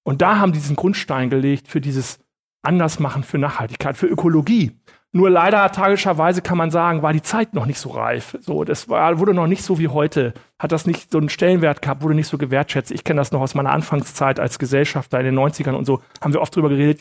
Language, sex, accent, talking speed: German, male, German, 230 wpm